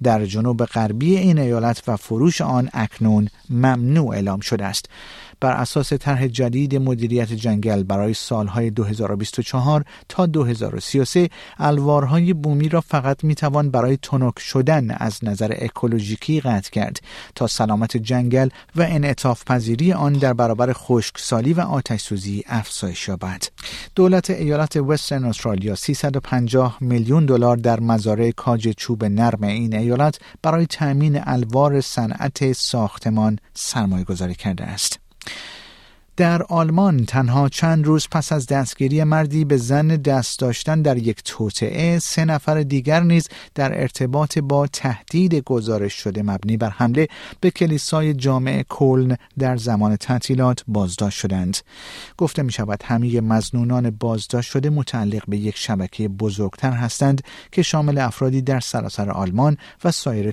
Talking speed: 130 wpm